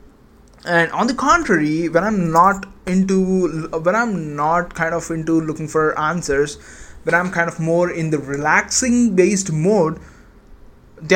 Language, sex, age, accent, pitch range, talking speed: English, male, 20-39, Indian, 155-205 Hz, 150 wpm